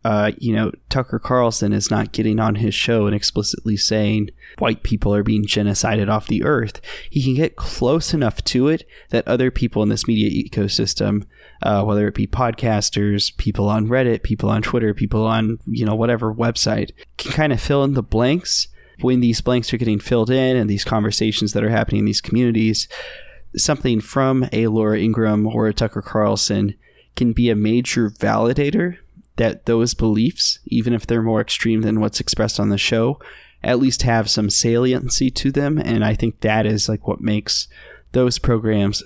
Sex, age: male, 20-39